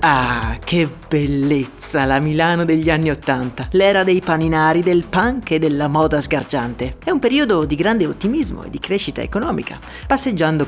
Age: 30-49